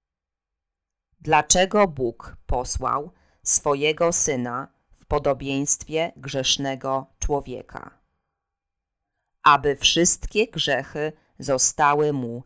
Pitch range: 125-150 Hz